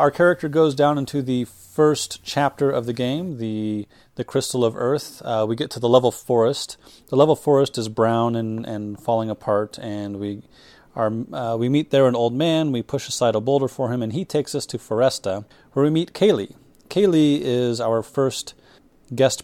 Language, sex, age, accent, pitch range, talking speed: English, male, 30-49, American, 110-140 Hz, 200 wpm